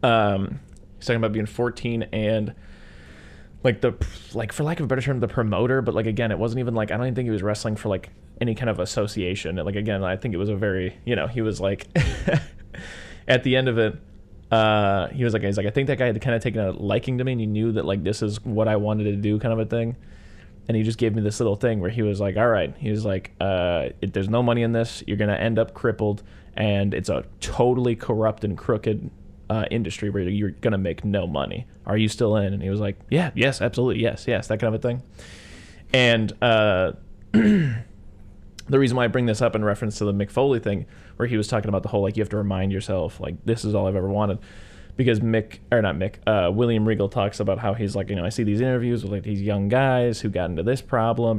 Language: English